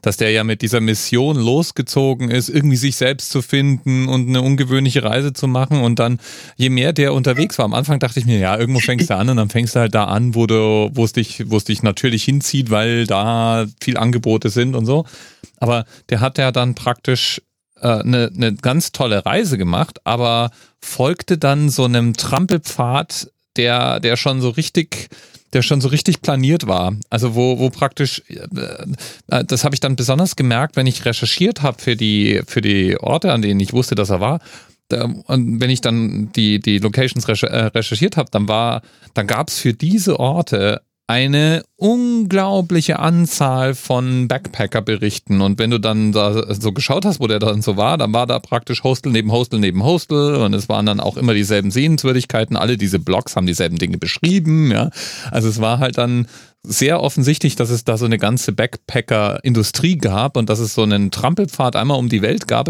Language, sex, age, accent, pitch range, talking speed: German, male, 40-59, German, 110-140 Hz, 195 wpm